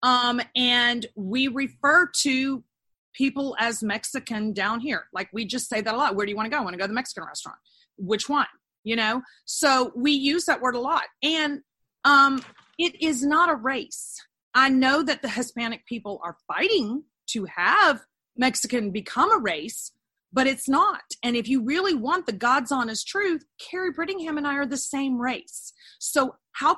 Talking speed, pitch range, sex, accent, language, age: 190 wpm, 225-280 Hz, female, American, English, 40-59